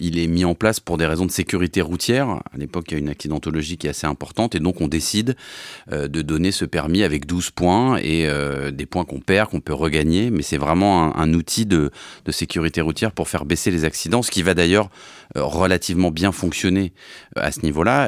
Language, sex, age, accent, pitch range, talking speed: French, male, 30-49, French, 80-100 Hz, 220 wpm